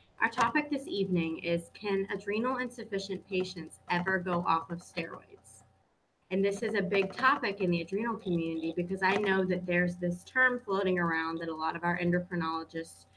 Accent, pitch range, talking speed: American, 165-195 Hz, 180 wpm